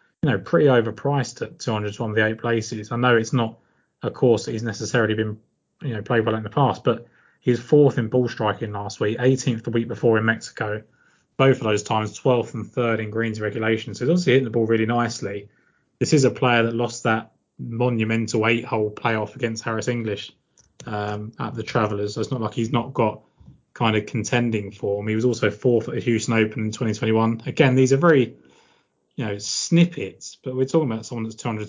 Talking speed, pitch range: 210 wpm, 110-125 Hz